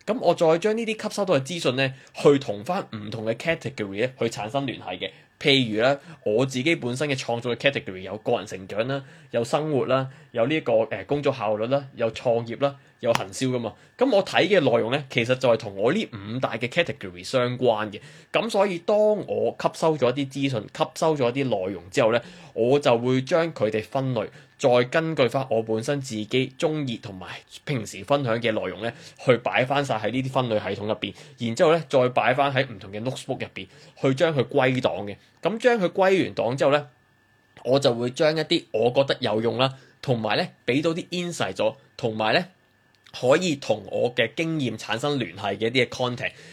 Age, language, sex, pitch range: 20-39, Chinese, male, 115-155 Hz